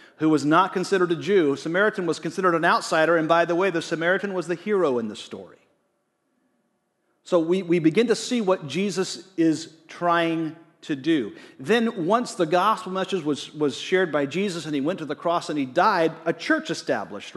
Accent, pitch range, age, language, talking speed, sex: American, 150-200 Hz, 40-59, English, 195 wpm, male